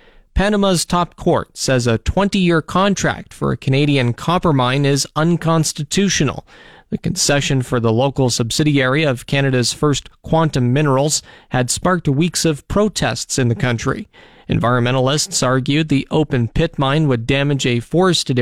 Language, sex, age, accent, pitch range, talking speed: English, male, 40-59, American, 125-165 Hz, 140 wpm